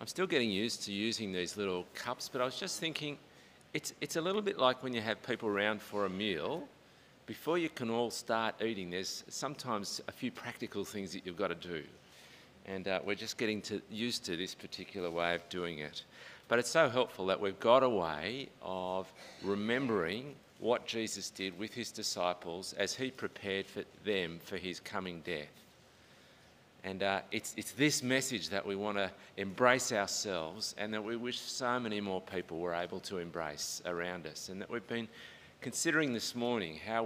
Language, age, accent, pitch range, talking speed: English, 50-69, Australian, 95-115 Hz, 195 wpm